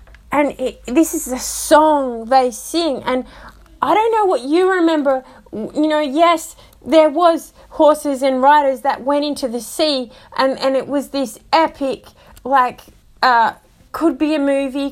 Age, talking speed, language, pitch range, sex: 30-49, 155 wpm, English, 240-300 Hz, female